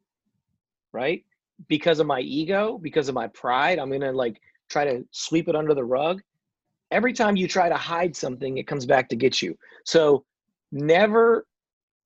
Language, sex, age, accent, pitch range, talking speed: English, male, 30-49, American, 135-190 Hz, 175 wpm